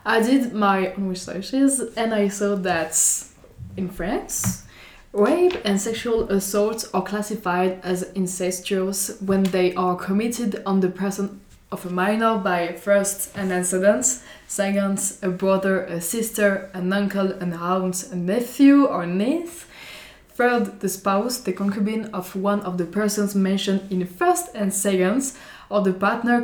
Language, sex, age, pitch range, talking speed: Italian, female, 20-39, 185-215 Hz, 150 wpm